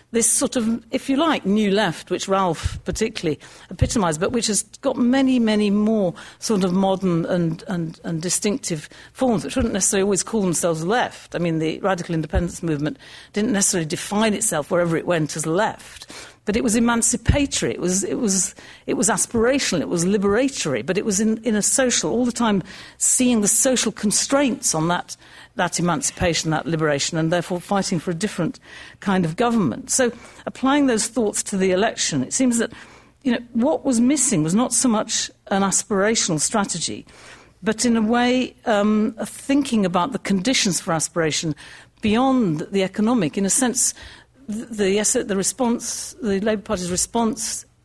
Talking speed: 175 wpm